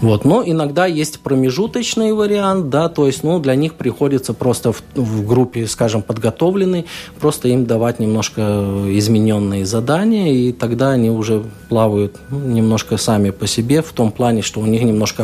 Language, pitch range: Russian, 110-140 Hz